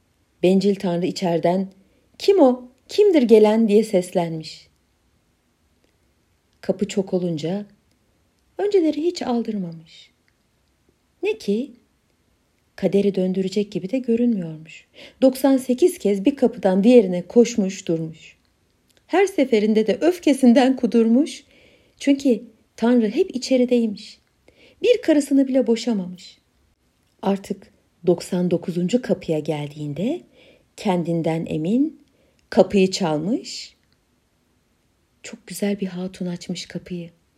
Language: Turkish